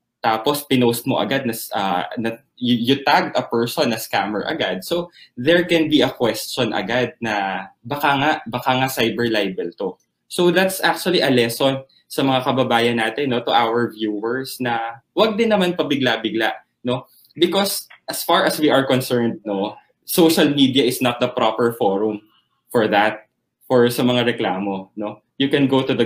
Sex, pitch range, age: male, 115-150 Hz, 20-39